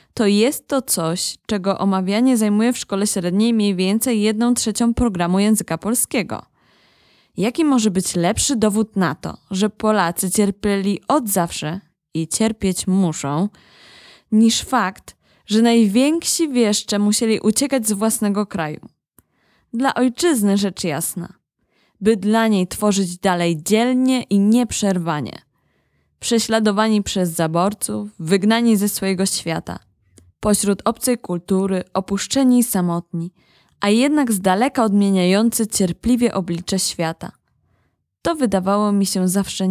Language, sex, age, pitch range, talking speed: Polish, female, 20-39, 185-225 Hz, 120 wpm